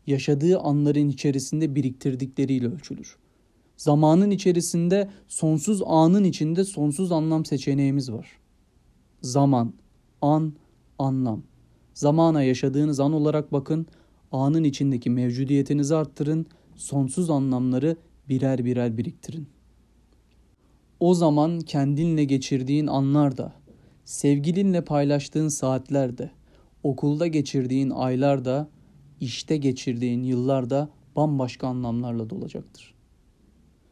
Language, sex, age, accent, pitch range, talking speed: Turkish, male, 40-59, native, 140-185 Hz, 90 wpm